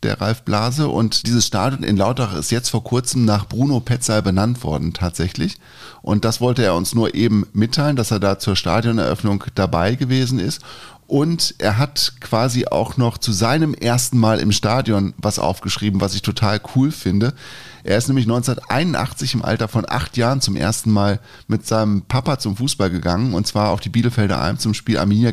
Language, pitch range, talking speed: German, 100-125 Hz, 190 wpm